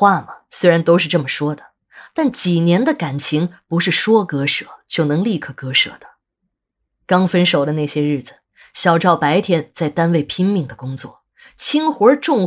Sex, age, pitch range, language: female, 20-39, 145-205 Hz, Chinese